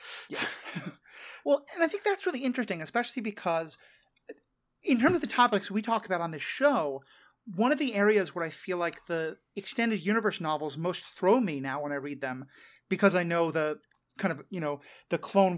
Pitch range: 165-235 Hz